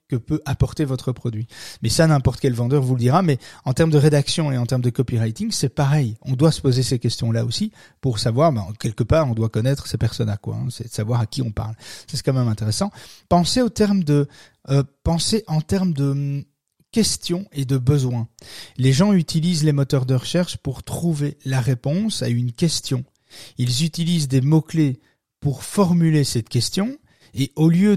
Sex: male